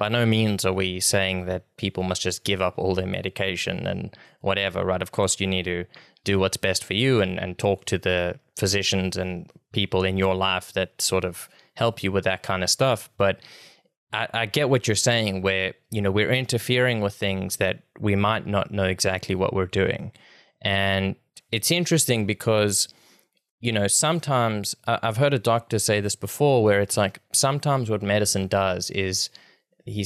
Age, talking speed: 20-39, 190 wpm